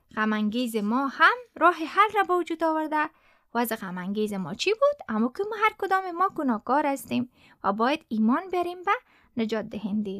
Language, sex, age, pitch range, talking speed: Persian, female, 20-39, 240-370 Hz, 170 wpm